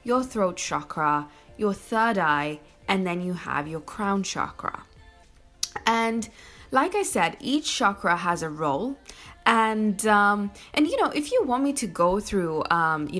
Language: English